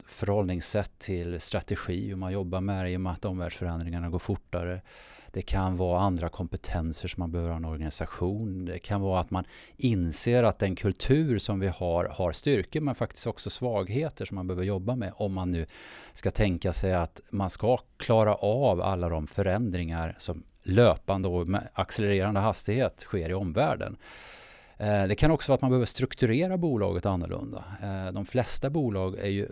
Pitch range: 90-110 Hz